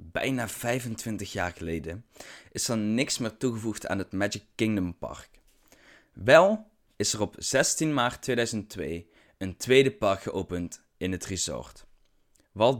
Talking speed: 135 wpm